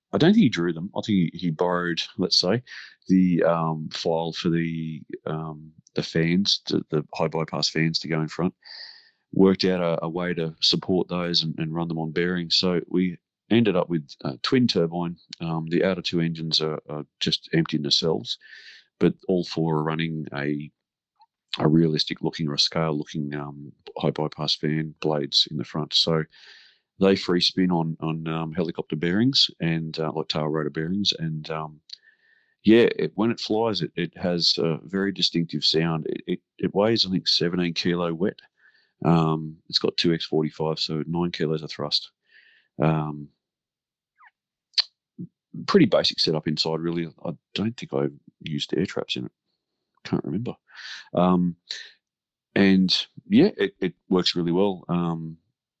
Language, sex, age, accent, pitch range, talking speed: English, male, 40-59, Australian, 80-90 Hz, 165 wpm